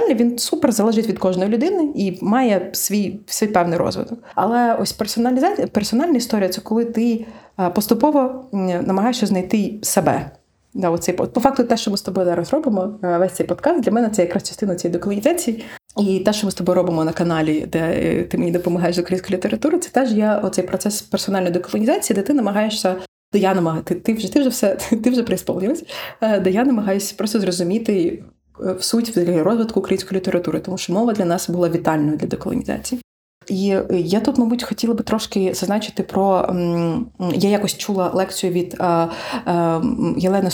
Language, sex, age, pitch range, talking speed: Ukrainian, female, 30-49, 180-230 Hz, 170 wpm